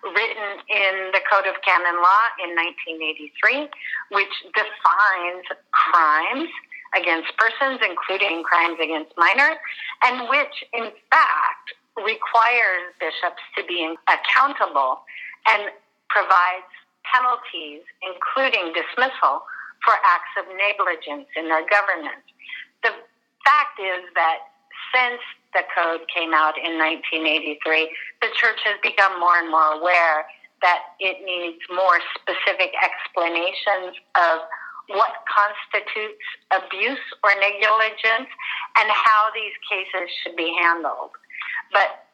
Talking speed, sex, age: 110 wpm, female, 50-69